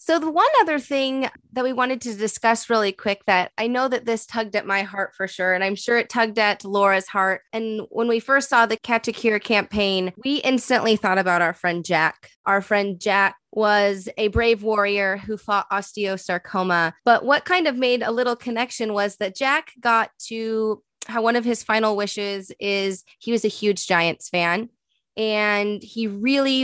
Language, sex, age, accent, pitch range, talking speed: English, female, 20-39, American, 195-235 Hz, 195 wpm